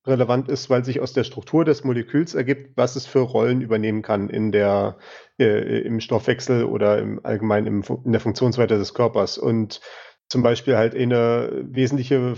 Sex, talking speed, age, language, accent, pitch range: male, 170 wpm, 30-49, German, German, 115-135 Hz